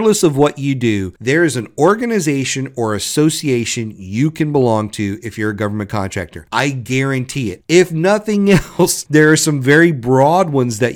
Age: 40-59